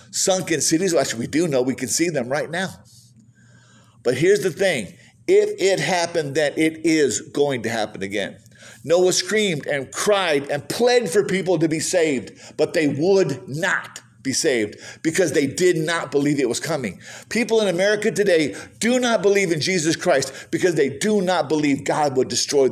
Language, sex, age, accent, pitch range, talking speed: English, male, 50-69, American, 135-185 Hz, 180 wpm